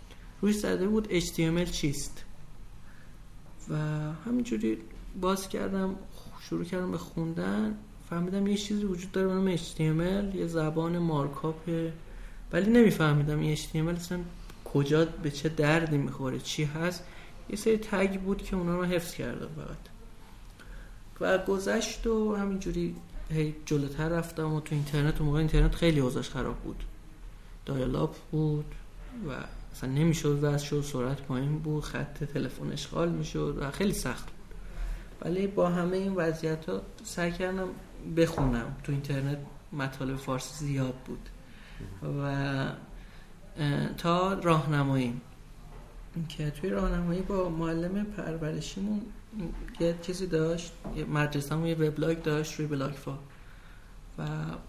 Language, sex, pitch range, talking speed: Persian, male, 145-175 Hz, 125 wpm